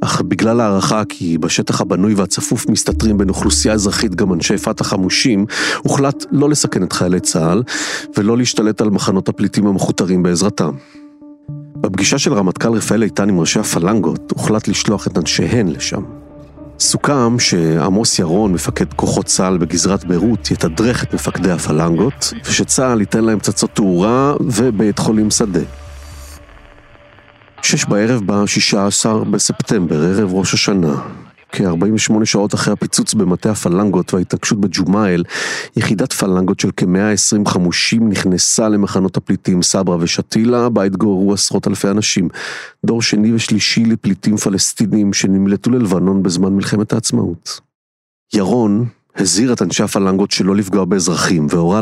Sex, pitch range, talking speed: male, 95-115 Hz, 125 wpm